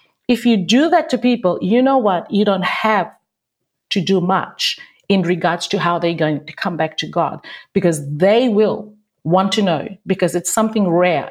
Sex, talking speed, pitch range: female, 190 wpm, 155-210 Hz